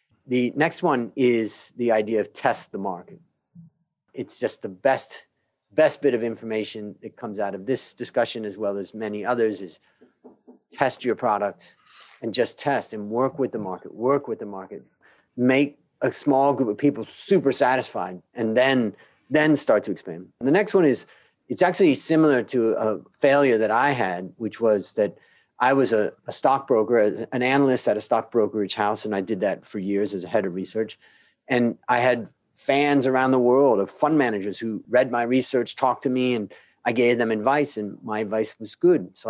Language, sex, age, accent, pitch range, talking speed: English, male, 40-59, American, 110-135 Hz, 190 wpm